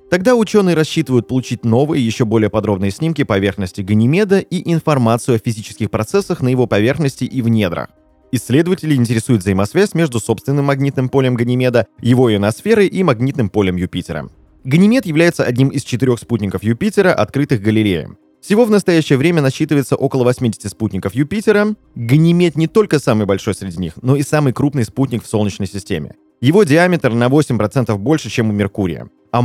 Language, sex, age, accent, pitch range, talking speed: Russian, male, 20-39, native, 100-150 Hz, 160 wpm